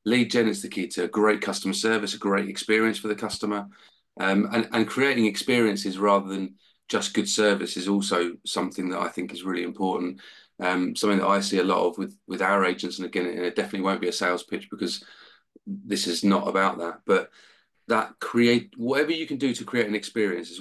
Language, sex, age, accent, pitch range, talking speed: English, male, 30-49, British, 90-105 Hz, 220 wpm